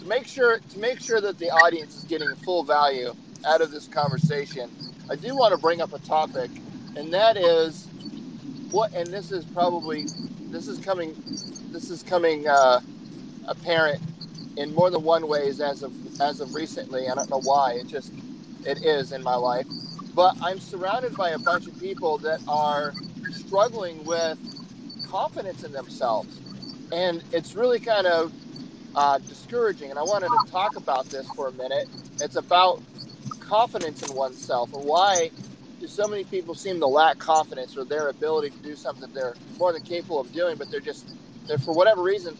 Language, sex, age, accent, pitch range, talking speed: English, male, 40-59, American, 150-205 Hz, 175 wpm